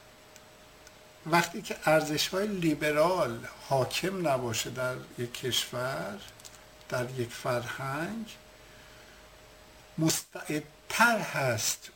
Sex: male